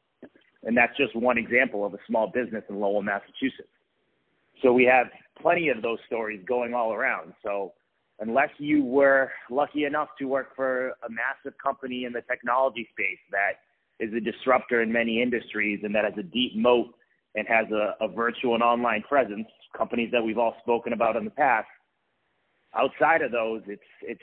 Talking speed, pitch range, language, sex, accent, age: 180 wpm, 110-135 Hz, English, male, American, 30-49